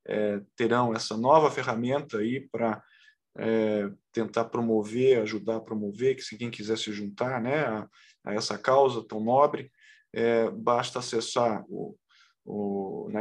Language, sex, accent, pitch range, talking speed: Portuguese, male, Brazilian, 115-130 Hz, 145 wpm